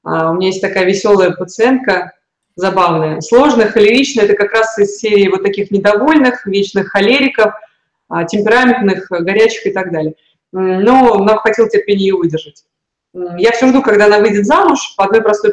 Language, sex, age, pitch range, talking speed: Russian, female, 20-39, 190-225 Hz, 155 wpm